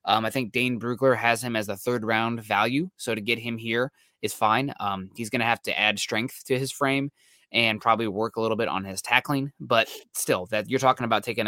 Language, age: English, 20-39